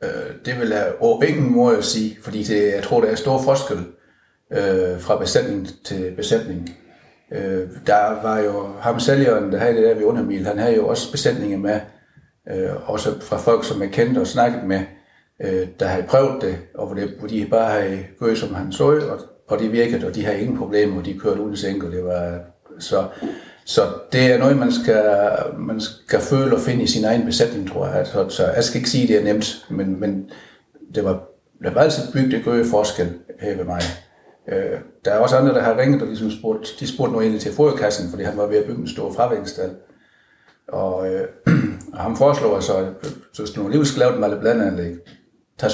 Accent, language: native, Danish